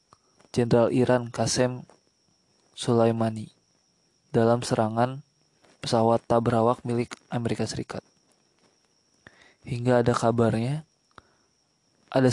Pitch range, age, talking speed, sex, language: 115-125 Hz, 20-39, 75 wpm, male, Indonesian